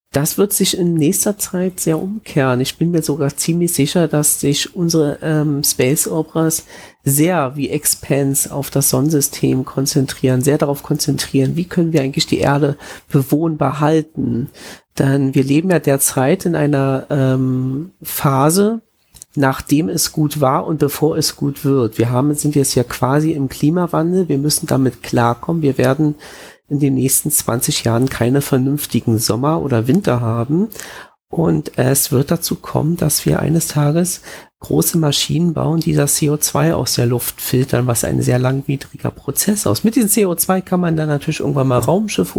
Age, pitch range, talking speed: 40-59, 135-165 Hz, 165 wpm